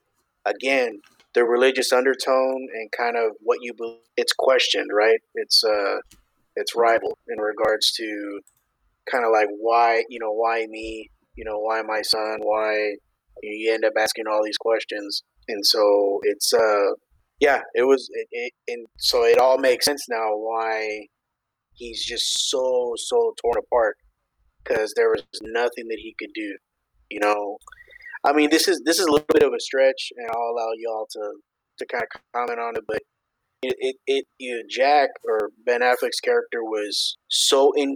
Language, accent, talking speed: English, American, 170 wpm